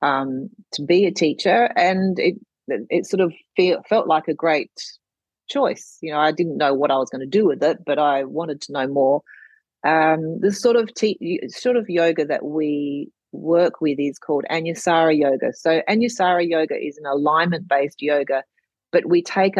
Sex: female